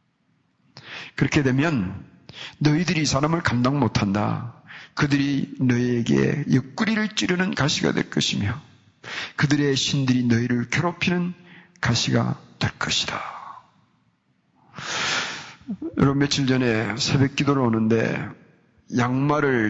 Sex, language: male, Korean